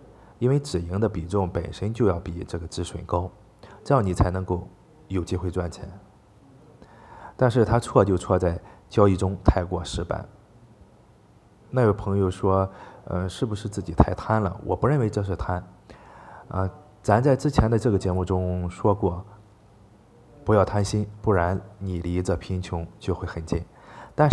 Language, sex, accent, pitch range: Chinese, male, native, 90-110 Hz